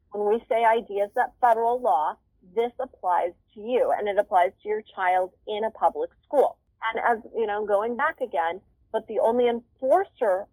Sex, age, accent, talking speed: female, 30-49, American, 180 wpm